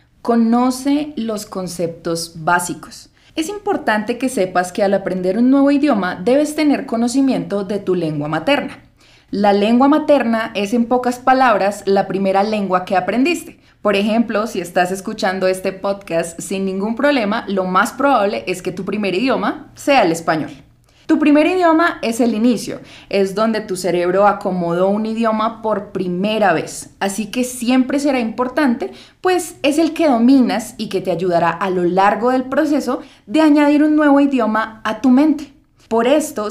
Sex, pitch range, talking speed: female, 185-255 Hz, 165 wpm